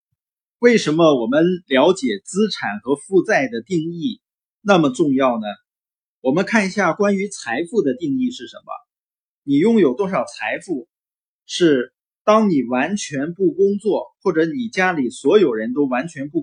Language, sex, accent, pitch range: Chinese, male, native, 160-250 Hz